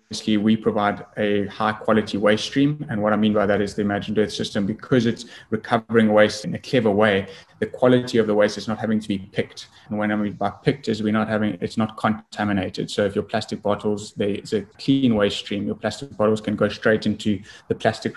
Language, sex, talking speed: English, male, 230 wpm